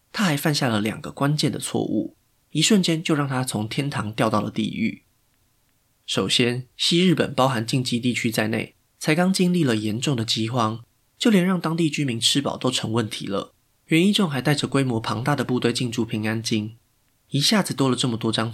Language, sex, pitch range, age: Chinese, male, 115-140 Hz, 20-39